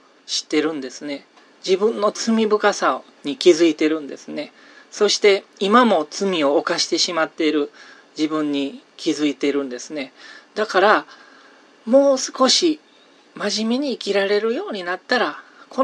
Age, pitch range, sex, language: 40-59, 165-260 Hz, male, Japanese